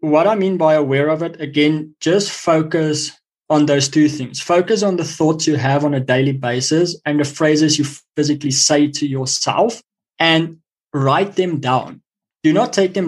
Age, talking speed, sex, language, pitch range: 20-39, 185 wpm, male, English, 150-190 Hz